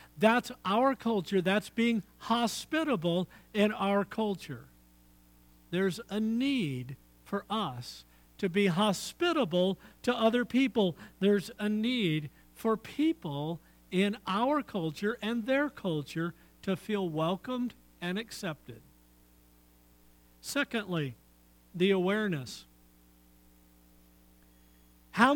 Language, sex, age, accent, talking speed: English, male, 50-69, American, 95 wpm